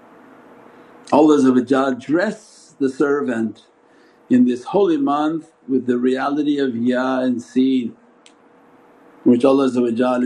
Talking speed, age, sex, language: 105 wpm, 60-79, male, English